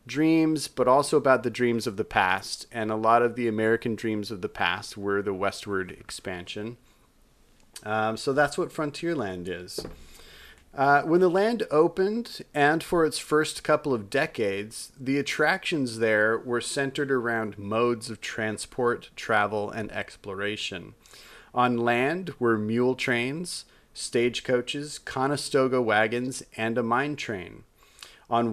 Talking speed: 140 wpm